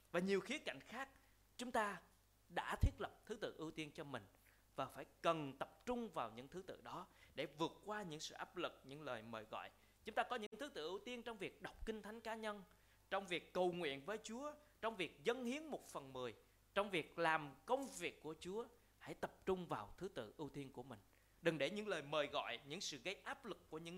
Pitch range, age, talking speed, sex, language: 130-190 Hz, 20-39, 240 wpm, male, Vietnamese